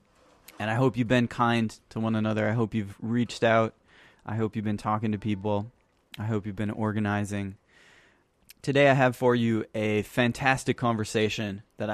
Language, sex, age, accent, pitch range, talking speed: English, male, 20-39, American, 110-130 Hz, 175 wpm